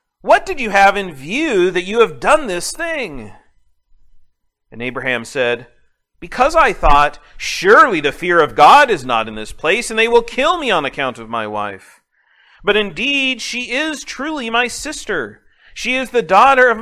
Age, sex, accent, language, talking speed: 40-59, male, American, English, 180 wpm